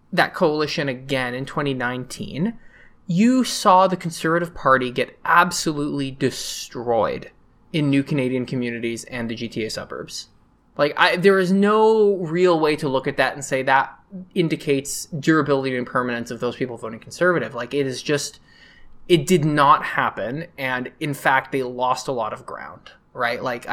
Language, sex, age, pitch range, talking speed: English, male, 20-39, 125-170 Hz, 160 wpm